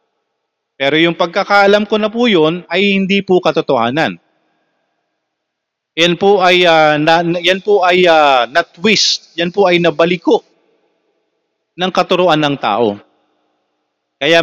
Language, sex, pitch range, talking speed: Filipino, male, 125-165 Hz, 125 wpm